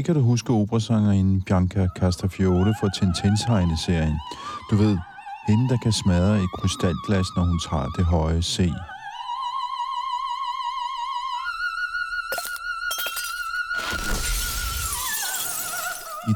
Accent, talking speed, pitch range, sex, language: native, 90 wpm, 90-115 Hz, male, Danish